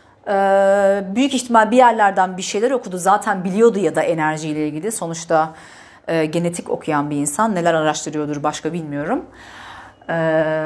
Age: 40-59